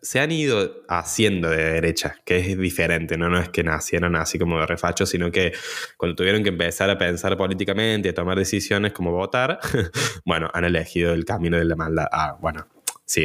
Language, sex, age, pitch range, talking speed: Spanish, male, 20-39, 85-105 Hz, 195 wpm